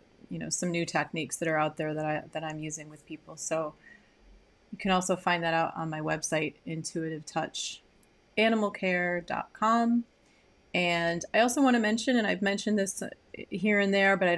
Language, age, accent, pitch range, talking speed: English, 30-49, American, 170-190 Hz, 185 wpm